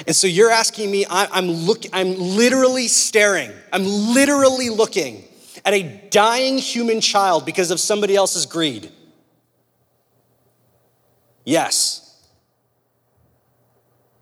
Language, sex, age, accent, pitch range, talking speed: English, male, 30-49, American, 205-250 Hz, 95 wpm